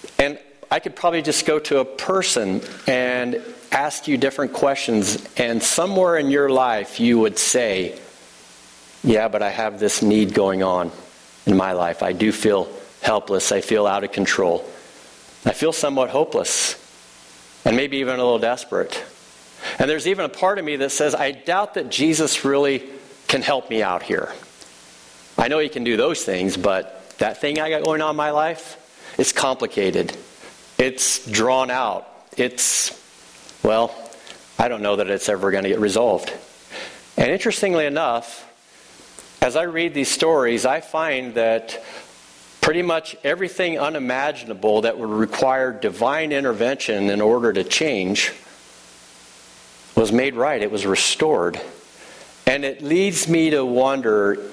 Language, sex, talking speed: English, male, 155 wpm